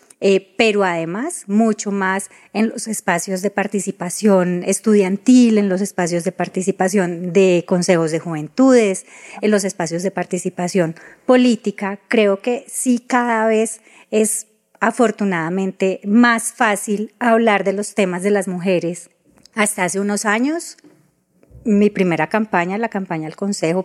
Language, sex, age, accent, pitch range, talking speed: Spanish, female, 30-49, Colombian, 180-225 Hz, 135 wpm